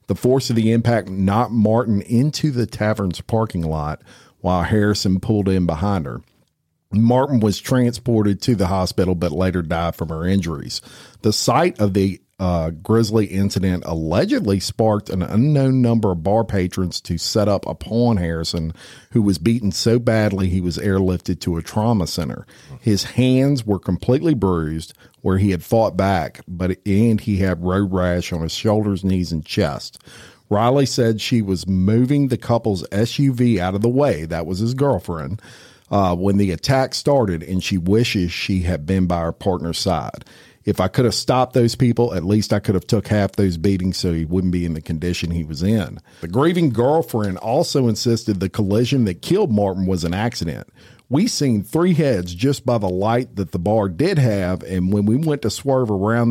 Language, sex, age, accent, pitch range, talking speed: English, male, 50-69, American, 90-120 Hz, 190 wpm